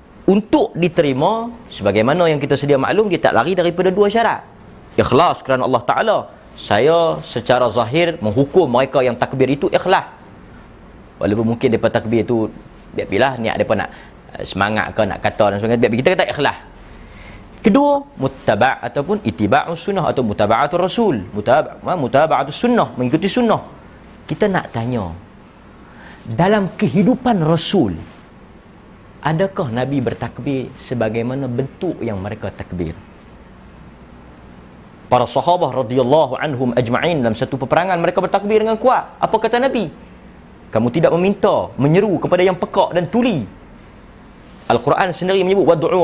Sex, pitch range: male, 120-200 Hz